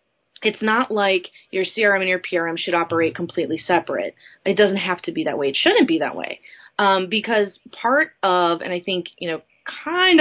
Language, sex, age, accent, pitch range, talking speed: English, female, 20-39, American, 165-215 Hz, 200 wpm